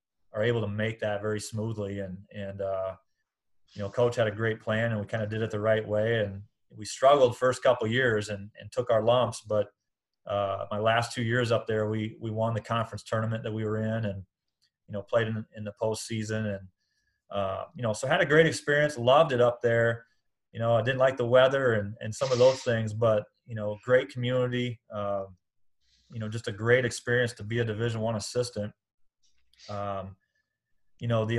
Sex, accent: male, American